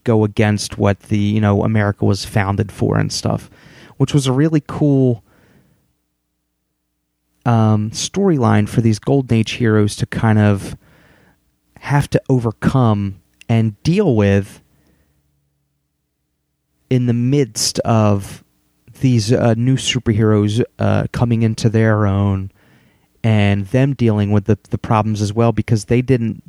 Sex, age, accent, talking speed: male, 30-49, American, 130 wpm